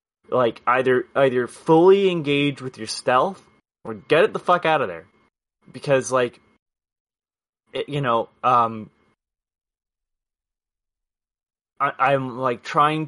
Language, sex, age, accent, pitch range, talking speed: English, male, 20-39, American, 115-140 Hz, 120 wpm